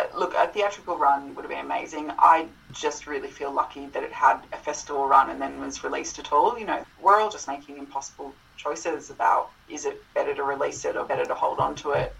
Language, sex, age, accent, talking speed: English, female, 20-39, Australian, 235 wpm